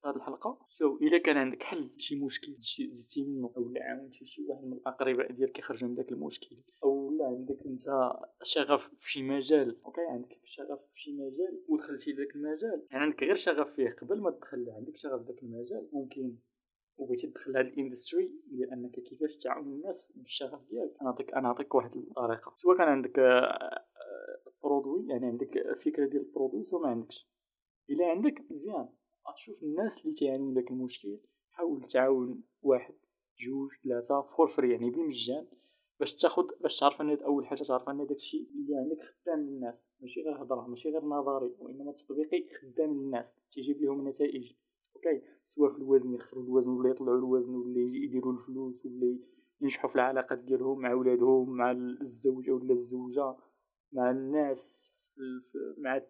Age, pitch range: 20-39, 125-155 Hz